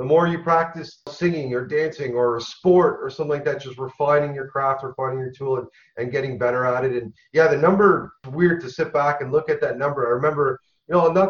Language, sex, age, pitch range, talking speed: English, male, 30-49, 135-175 Hz, 240 wpm